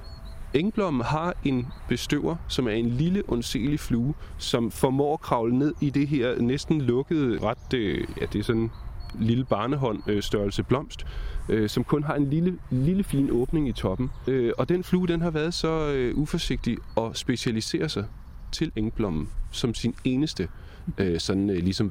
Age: 30-49